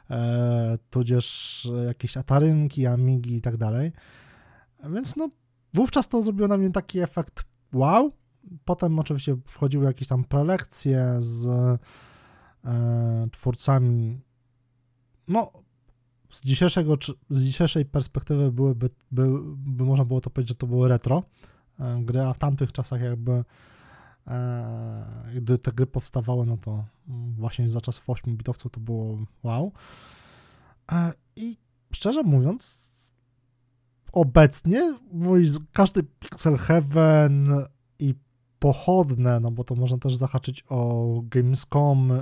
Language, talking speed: Polish, 110 wpm